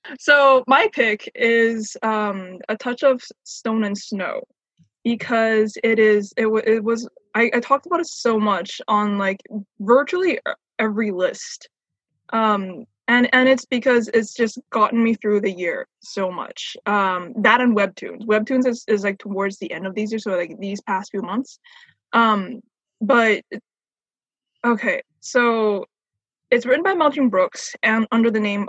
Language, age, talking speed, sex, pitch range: English, 20-39, 160 wpm, female, 215-265 Hz